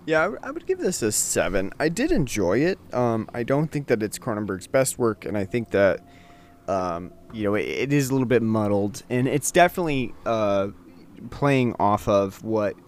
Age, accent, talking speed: 30-49, American, 195 wpm